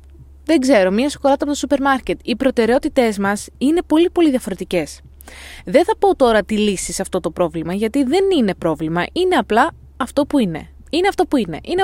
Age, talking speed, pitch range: 20-39, 200 wpm, 180-265 Hz